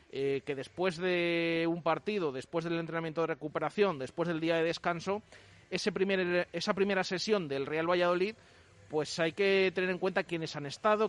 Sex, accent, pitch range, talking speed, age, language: male, Spanish, 140-180 Hz, 180 wpm, 30-49, Spanish